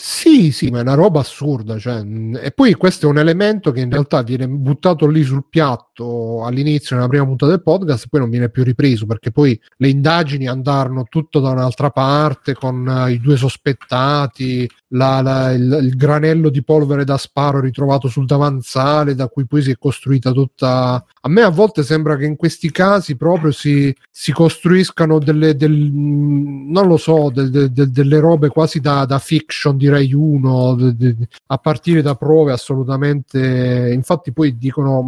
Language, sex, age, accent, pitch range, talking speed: Italian, male, 30-49, native, 125-150 Hz, 185 wpm